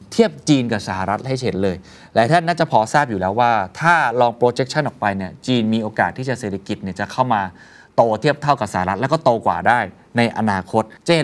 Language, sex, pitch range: Thai, male, 100-140 Hz